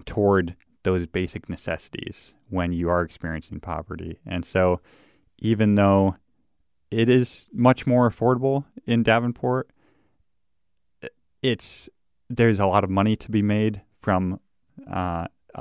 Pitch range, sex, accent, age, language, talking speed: 90-105 Hz, male, American, 20-39, English, 120 wpm